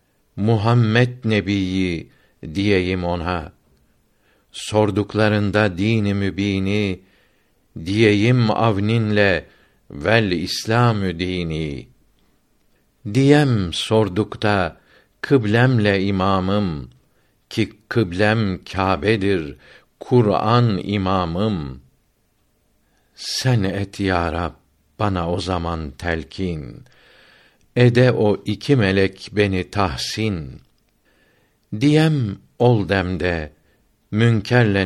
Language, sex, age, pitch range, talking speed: Turkish, male, 60-79, 90-110 Hz, 65 wpm